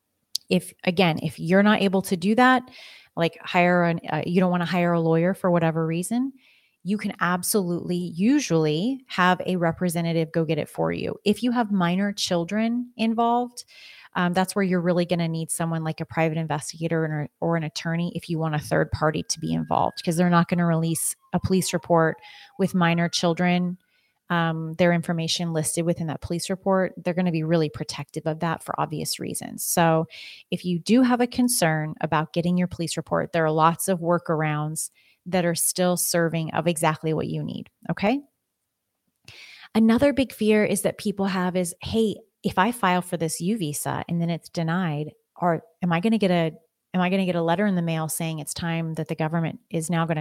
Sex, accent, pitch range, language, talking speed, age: female, American, 165-190 Hz, English, 205 wpm, 30-49